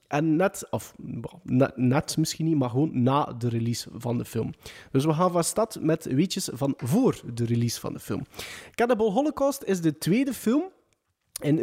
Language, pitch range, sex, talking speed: Dutch, 130-185 Hz, male, 185 wpm